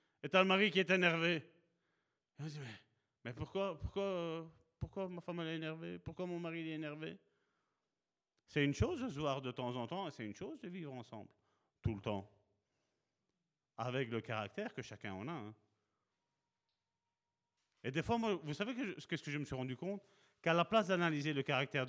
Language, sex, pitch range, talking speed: French, male, 110-175 Hz, 205 wpm